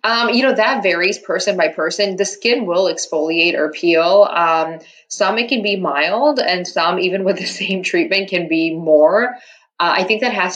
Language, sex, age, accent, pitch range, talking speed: English, female, 20-39, American, 160-195 Hz, 200 wpm